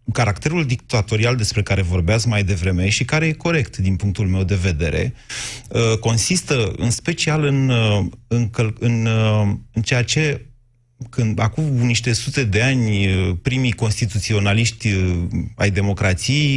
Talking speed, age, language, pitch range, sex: 120 wpm, 30-49, Romanian, 110-135 Hz, male